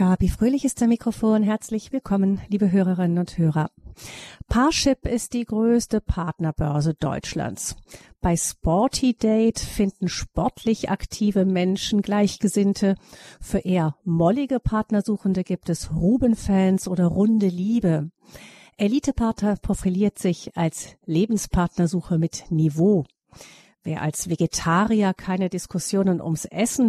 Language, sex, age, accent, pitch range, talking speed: German, female, 50-69, German, 175-220 Hz, 110 wpm